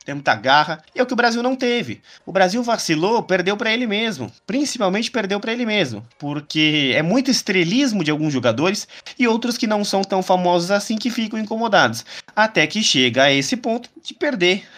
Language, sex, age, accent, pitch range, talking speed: Portuguese, male, 20-39, Brazilian, 145-205 Hz, 200 wpm